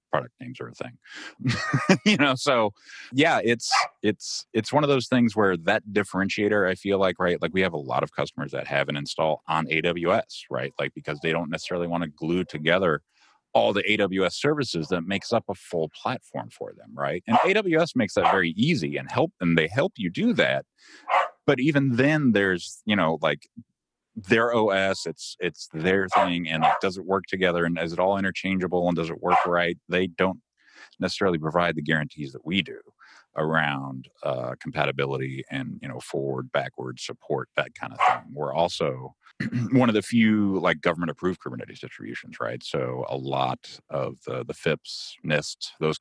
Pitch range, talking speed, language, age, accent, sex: 80-100 Hz, 190 wpm, English, 30-49, American, male